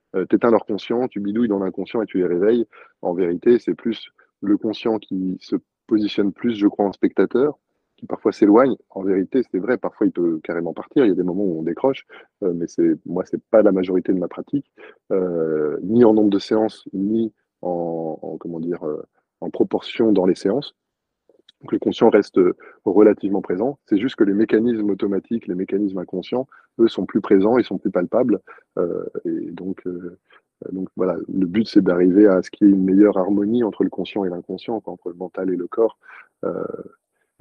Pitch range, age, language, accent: 90-115 Hz, 20-39, French, French